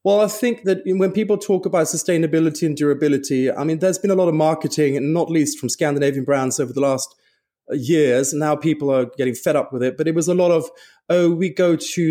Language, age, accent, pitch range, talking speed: English, 30-49, British, 145-185 Hz, 240 wpm